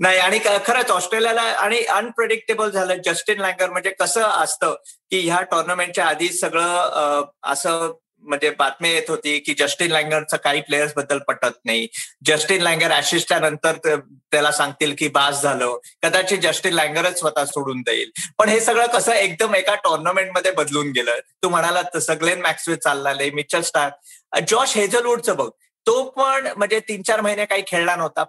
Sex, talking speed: male, 155 wpm